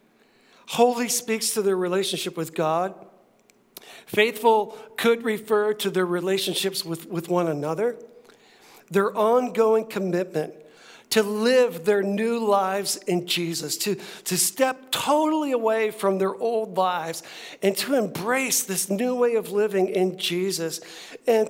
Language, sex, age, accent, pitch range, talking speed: English, male, 60-79, American, 180-225 Hz, 130 wpm